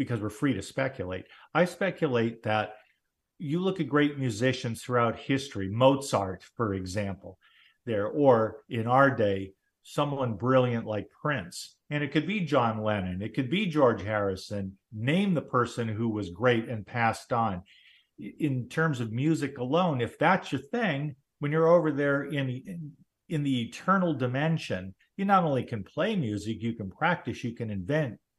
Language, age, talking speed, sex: English, 50-69, 160 wpm, male